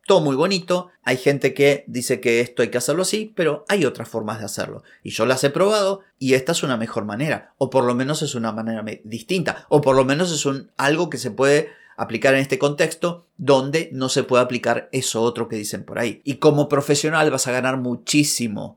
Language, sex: Spanish, male